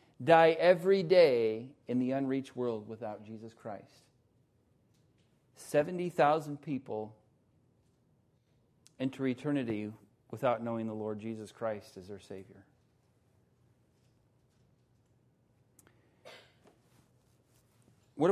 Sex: male